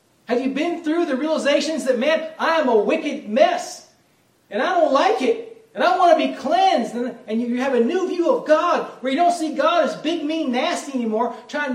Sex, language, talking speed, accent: male, English, 225 wpm, American